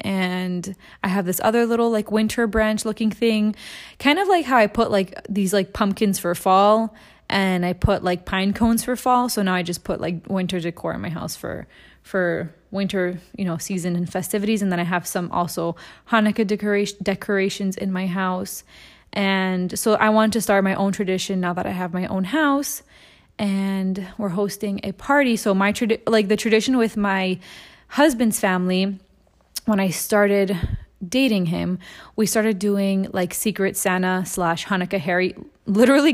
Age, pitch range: 20-39, 185-220 Hz